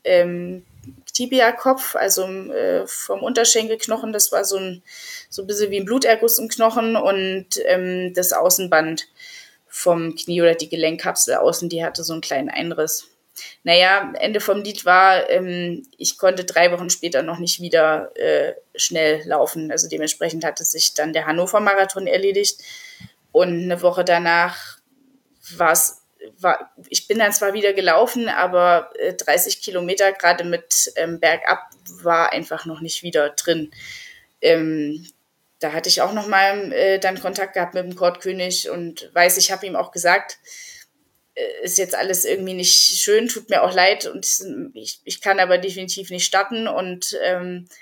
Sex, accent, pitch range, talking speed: female, German, 175-225 Hz, 155 wpm